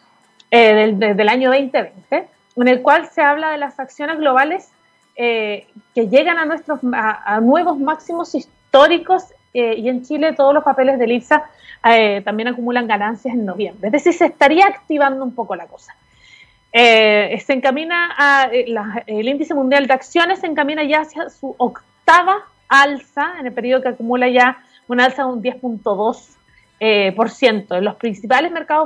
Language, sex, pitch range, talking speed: Spanish, female, 230-295 Hz, 175 wpm